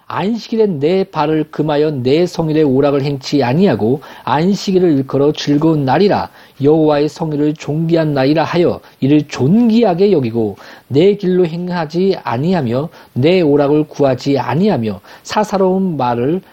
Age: 40-59